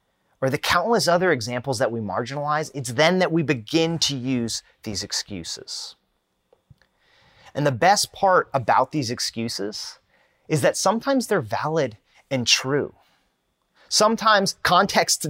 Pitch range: 130-190 Hz